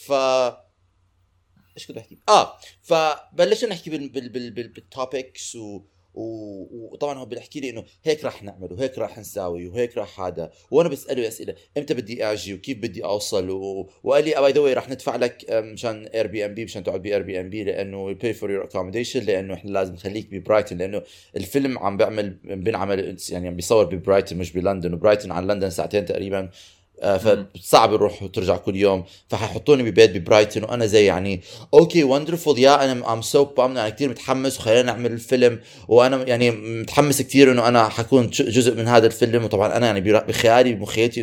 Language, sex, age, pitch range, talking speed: Arabic, male, 30-49, 100-130 Hz, 180 wpm